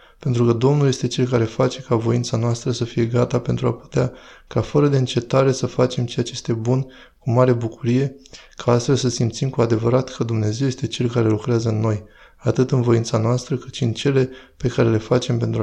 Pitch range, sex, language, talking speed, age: 115-130 Hz, male, Romanian, 215 wpm, 20-39